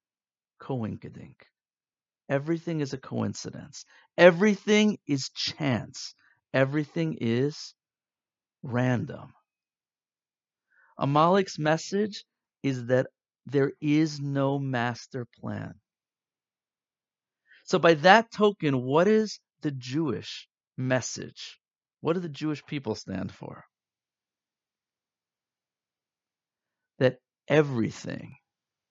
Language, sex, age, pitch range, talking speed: English, male, 50-69, 130-170 Hz, 80 wpm